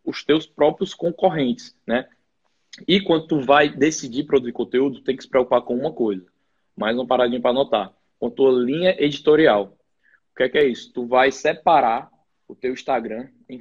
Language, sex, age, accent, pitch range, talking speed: Portuguese, male, 20-39, Brazilian, 115-150 Hz, 185 wpm